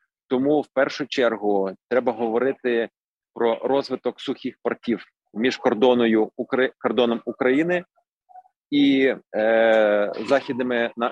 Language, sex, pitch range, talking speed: Ukrainian, male, 110-135 Hz, 80 wpm